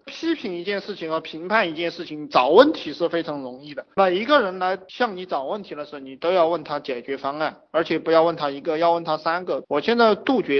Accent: native